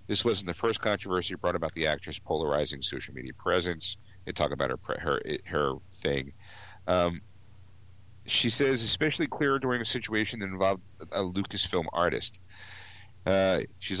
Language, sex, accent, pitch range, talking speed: English, male, American, 90-105 Hz, 150 wpm